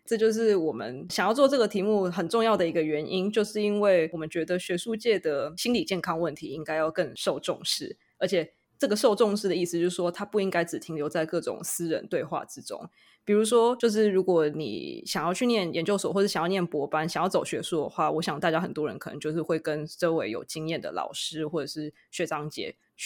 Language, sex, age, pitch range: English, female, 20-39, 160-205 Hz